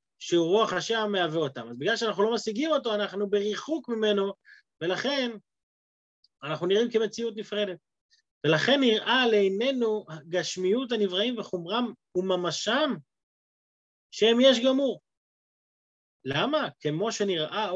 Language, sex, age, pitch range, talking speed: Hebrew, male, 30-49, 155-220 Hz, 110 wpm